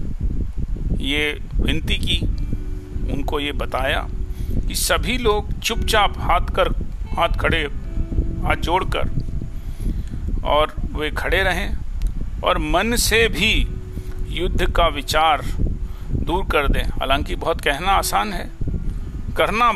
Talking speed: 110 wpm